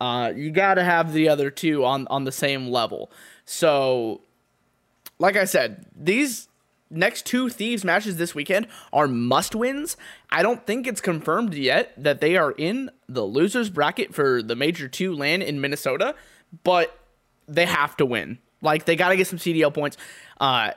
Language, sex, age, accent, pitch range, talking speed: English, male, 20-39, American, 140-190 Hz, 175 wpm